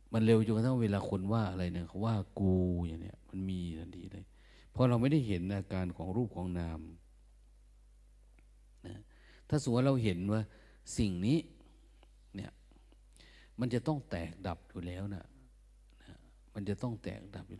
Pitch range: 90-115 Hz